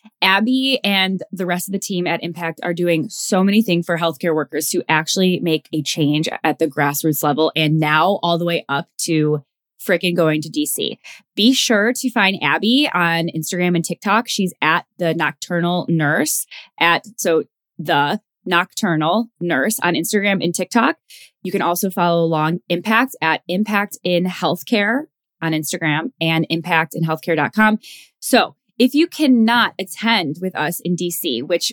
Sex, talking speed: female, 165 wpm